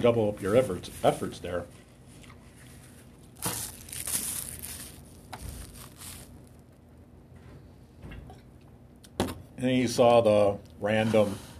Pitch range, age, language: 100-120 Hz, 50-69, English